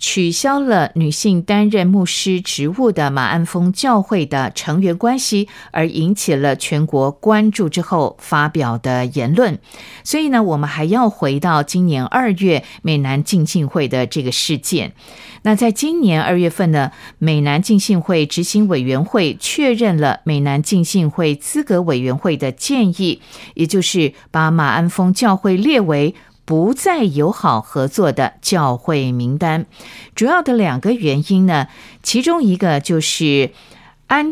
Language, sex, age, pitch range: Chinese, female, 50-69, 150-210 Hz